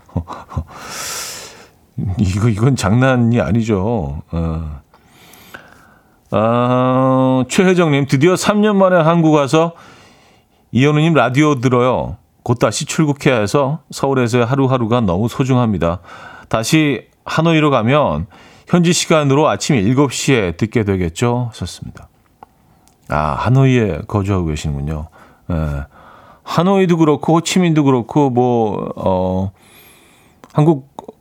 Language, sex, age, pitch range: Korean, male, 40-59, 100-145 Hz